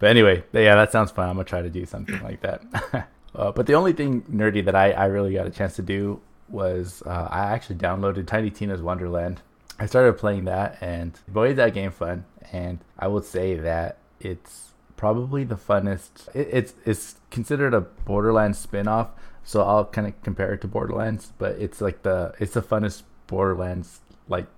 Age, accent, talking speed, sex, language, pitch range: 20-39, American, 190 wpm, male, English, 90-105 Hz